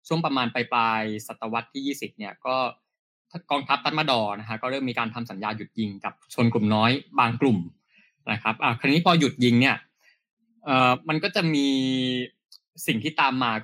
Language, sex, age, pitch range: Thai, male, 20-39, 115-140 Hz